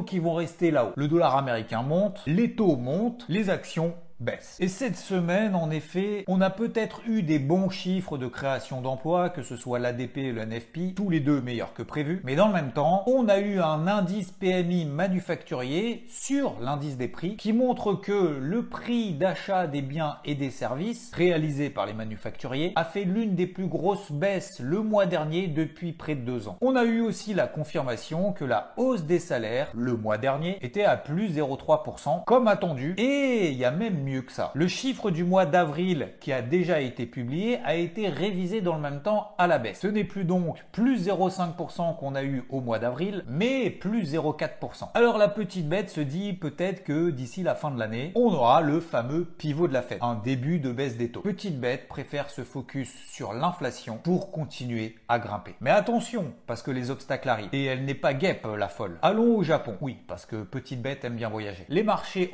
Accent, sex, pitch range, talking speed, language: French, male, 135-195 Hz, 205 wpm, French